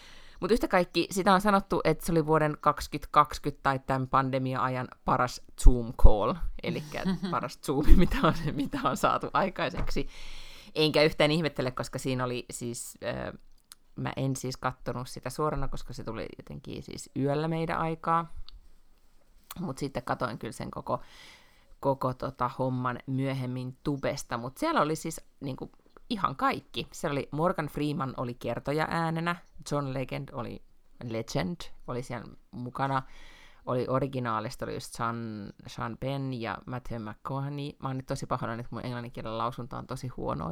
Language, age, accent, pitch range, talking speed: Finnish, 30-49, native, 125-170 Hz, 150 wpm